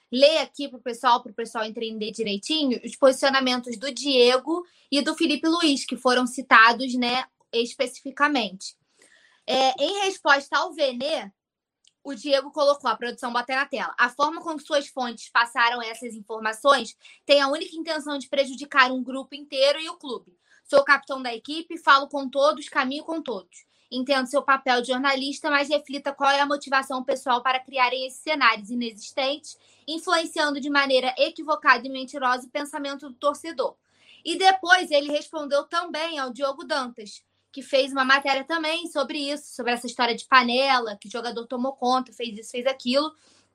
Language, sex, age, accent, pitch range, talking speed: Portuguese, female, 20-39, Brazilian, 255-290 Hz, 165 wpm